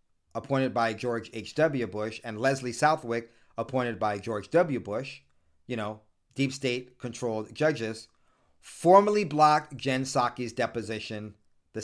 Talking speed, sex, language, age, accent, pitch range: 125 wpm, male, English, 40-59, American, 115-140 Hz